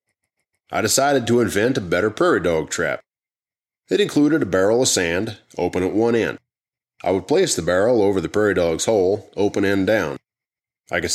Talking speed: 185 wpm